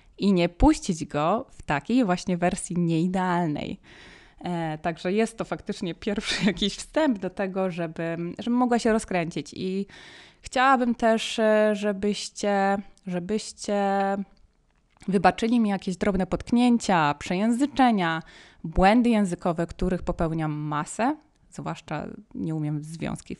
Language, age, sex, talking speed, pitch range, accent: Polish, 20-39, female, 115 wpm, 180-240 Hz, native